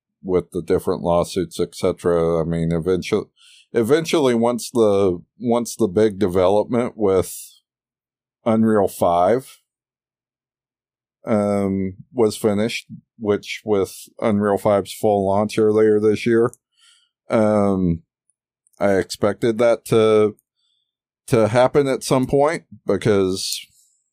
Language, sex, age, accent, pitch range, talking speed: English, male, 50-69, American, 105-130 Hz, 100 wpm